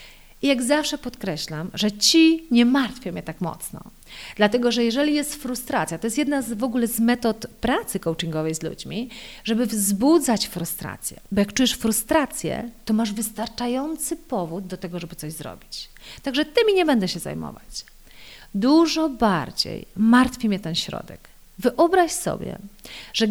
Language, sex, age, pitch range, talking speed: Polish, female, 40-59, 200-290 Hz, 150 wpm